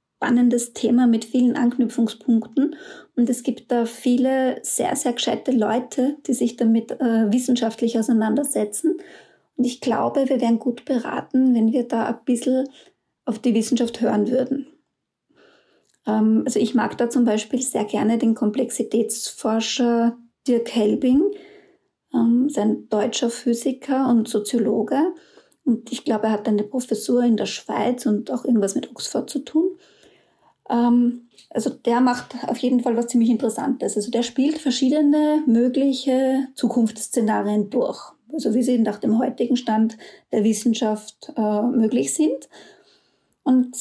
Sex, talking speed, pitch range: female, 140 wpm, 230-265 Hz